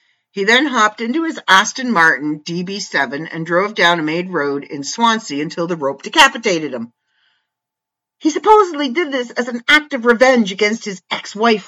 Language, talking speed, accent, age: English, 170 wpm, American, 50-69